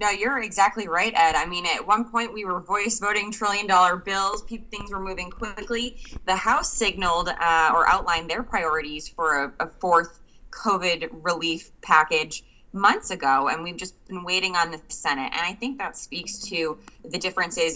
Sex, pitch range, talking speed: female, 160-195 Hz, 180 wpm